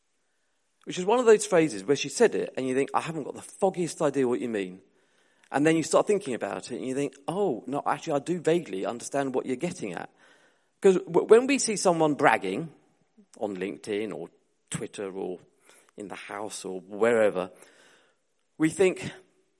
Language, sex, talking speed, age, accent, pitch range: English, male, 185 wpm, 40-59, British, 130-195 Hz